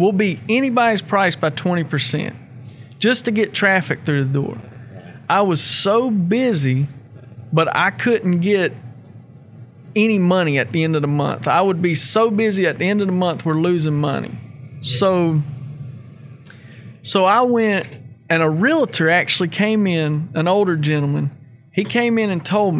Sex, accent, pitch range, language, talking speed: male, American, 145-200 Hz, English, 160 wpm